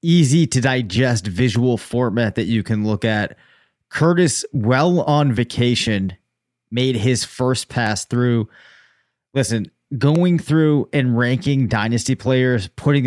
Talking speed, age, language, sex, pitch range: 125 wpm, 20-39, English, male, 115-135 Hz